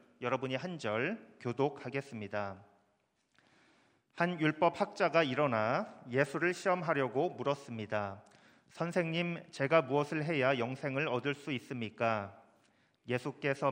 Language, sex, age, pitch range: Korean, male, 40-59, 120-155 Hz